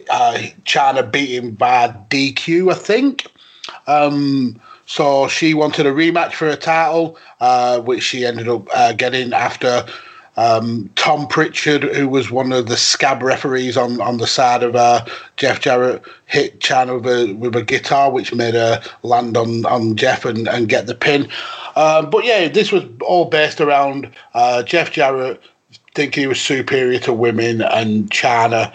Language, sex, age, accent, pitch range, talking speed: English, male, 30-49, British, 125-155 Hz, 170 wpm